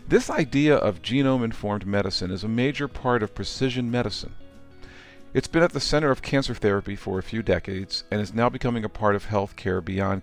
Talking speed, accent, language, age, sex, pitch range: 200 wpm, American, English, 40-59, male, 95-125 Hz